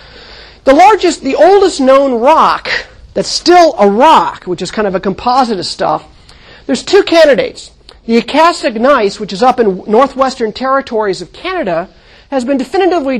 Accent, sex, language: American, male, English